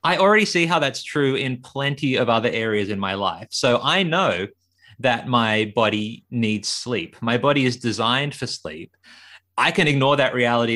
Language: English